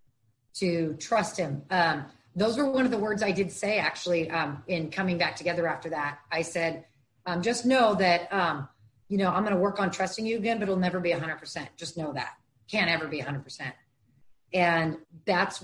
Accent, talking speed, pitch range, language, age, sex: American, 215 wpm, 160-200 Hz, English, 30-49, female